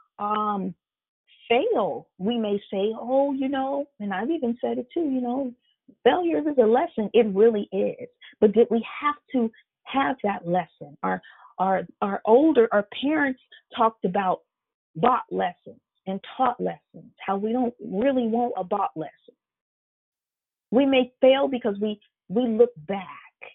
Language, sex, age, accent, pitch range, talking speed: English, female, 40-59, American, 200-250 Hz, 155 wpm